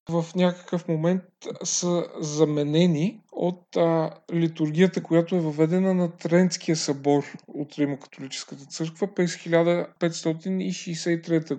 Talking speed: 100 wpm